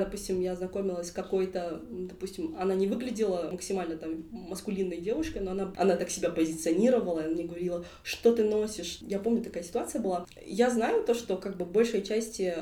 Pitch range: 180-210 Hz